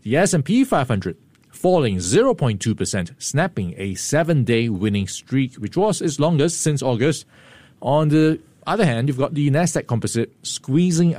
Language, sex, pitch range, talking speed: English, male, 110-140 Hz, 140 wpm